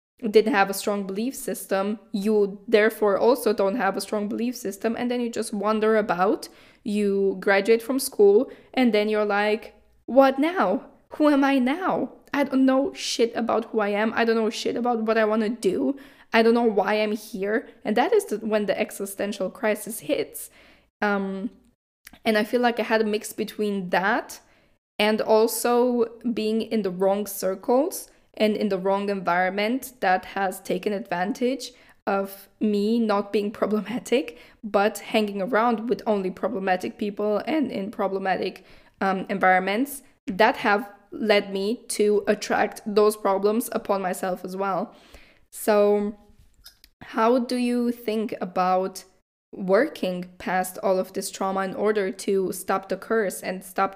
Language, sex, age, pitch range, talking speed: English, female, 10-29, 195-230 Hz, 160 wpm